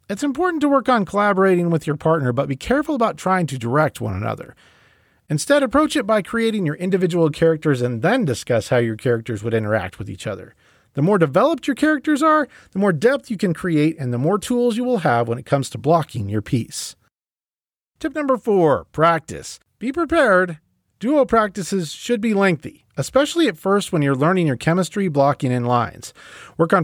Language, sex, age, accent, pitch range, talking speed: English, male, 40-59, American, 130-205 Hz, 195 wpm